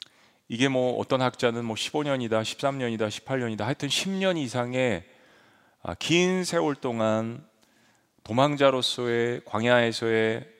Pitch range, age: 115-145 Hz, 40-59